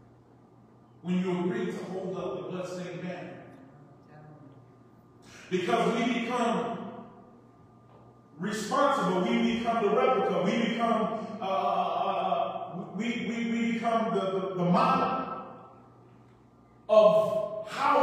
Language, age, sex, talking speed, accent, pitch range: English, 20-39, male, 100 wpm, American, 195-250 Hz